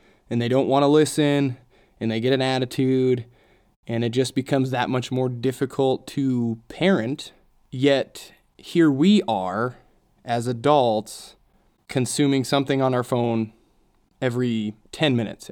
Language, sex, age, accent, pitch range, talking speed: English, male, 20-39, American, 120-150 Hz, 135 wpm